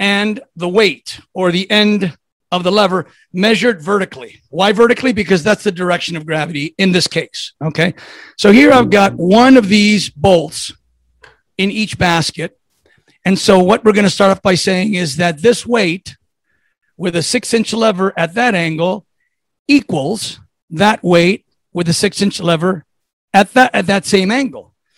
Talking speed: 165 wpm